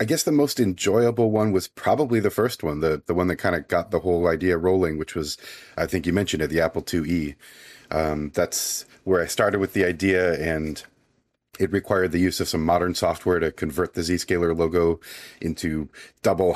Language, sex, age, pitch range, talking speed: English, male, 30-49, 80-100 Hz, 205 wpm